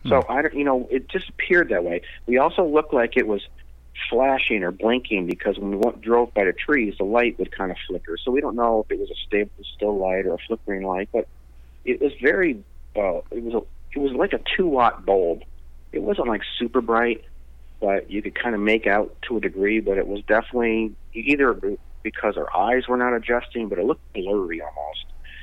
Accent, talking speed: American, 215 wpm